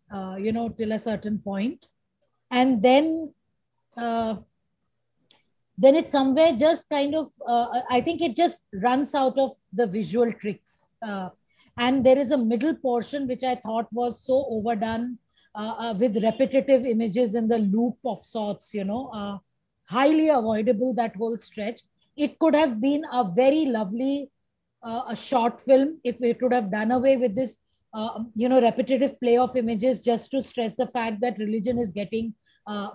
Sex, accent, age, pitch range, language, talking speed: female, native, 20-39, 225-270 Hz, Hindi, 170 wpm